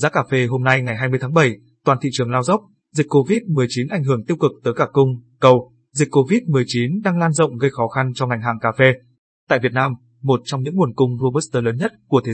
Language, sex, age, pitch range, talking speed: Vietnamese, male, 20-39, 120-145 Hz, 245 wpm